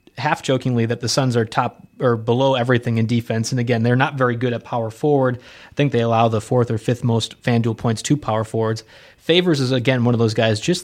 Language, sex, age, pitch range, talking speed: English, male, 20-39, 115-135 Hz, 240 wpm